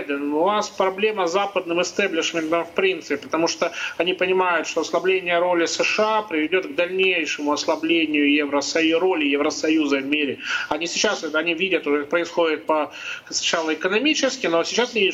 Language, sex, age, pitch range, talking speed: Russian, male, 30-49, 155-190 Hz, 150 wpm